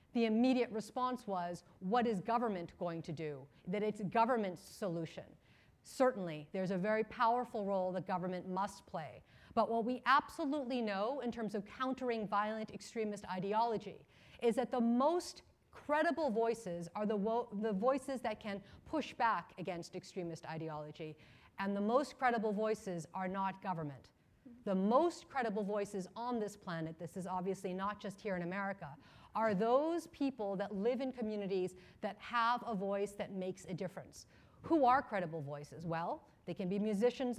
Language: English